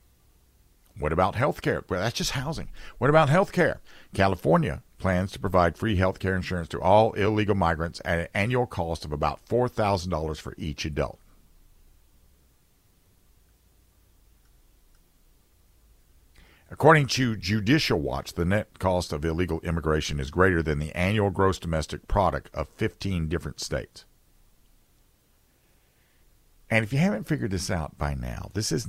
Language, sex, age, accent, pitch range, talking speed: English, male, 50-69, American, 80-105 Hz, 140 wpm